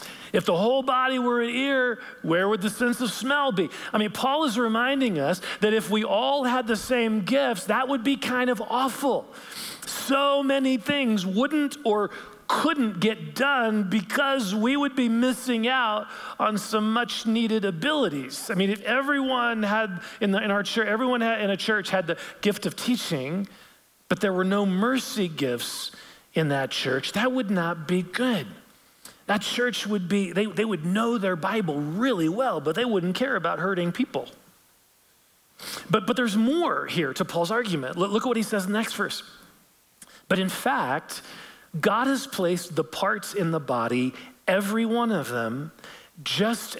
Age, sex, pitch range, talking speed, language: 40-59, male, 185-250 Hz, 180 wpm, English